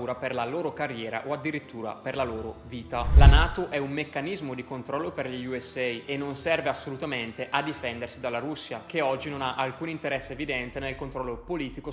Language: Italian